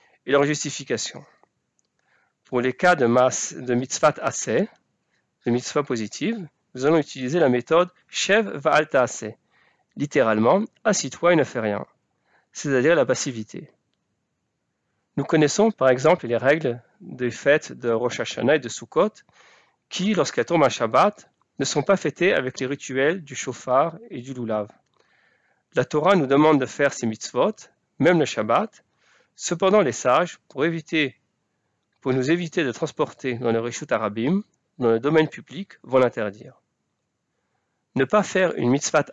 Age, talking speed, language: 40-59, 145 wpm, French